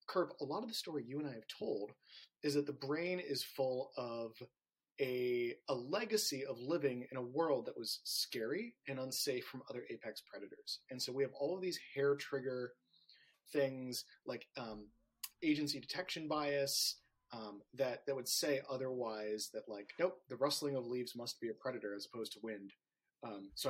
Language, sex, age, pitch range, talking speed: English, male, 30-49, 120-165 Hz, 185 wpm